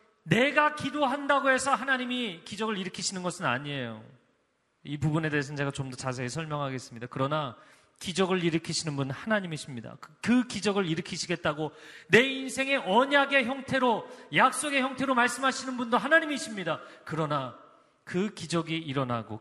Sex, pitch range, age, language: male, 135-215 Hz, 40-59, Korean